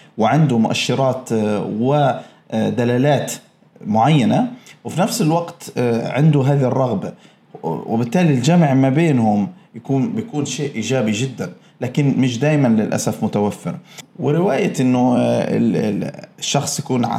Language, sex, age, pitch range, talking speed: Arabic, male, 20-39, 115-155 Hz, 100 wpm